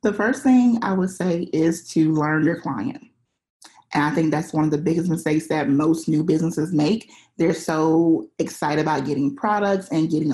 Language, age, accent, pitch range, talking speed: English, 30-49, American, 160-195 Hz, 190 wpm